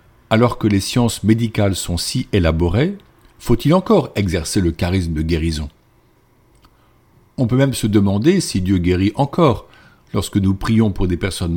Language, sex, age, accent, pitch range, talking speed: French, male, 50-69, French, 90-125 Hz, 155 wpm